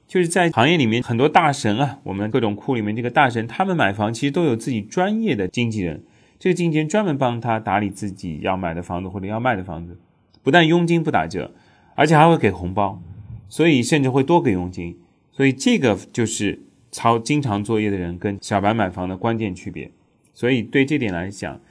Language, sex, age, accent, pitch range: Chinese, male, 30-49, native, 100-140 Hz